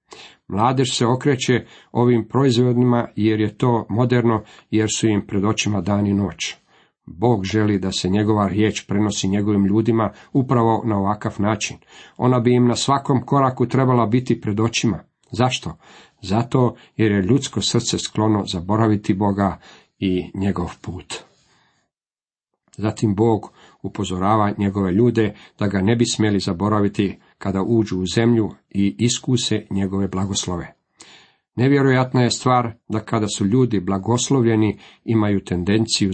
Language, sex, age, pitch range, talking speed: Croatian, male, 50-69, 100-120 Hz, 135 wpm